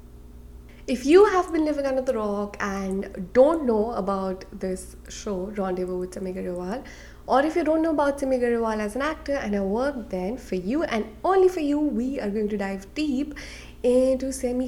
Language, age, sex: English, 20-39, female